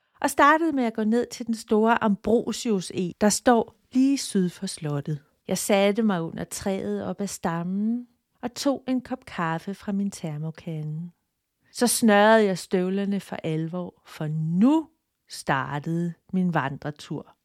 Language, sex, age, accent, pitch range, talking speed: Danish, female, 40-59, native, 185-235 Hz, 150 wpm